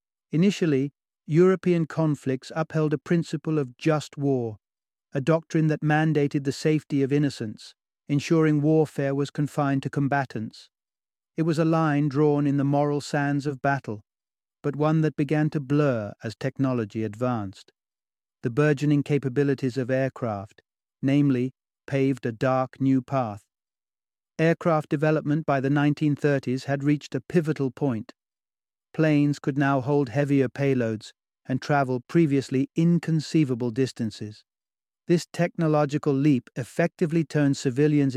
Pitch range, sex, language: 125-150 Hz, male, English